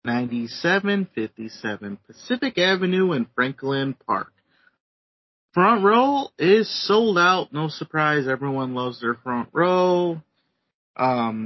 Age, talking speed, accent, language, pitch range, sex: 30-49, 105 wpm, American, English, 125-175 Hz, male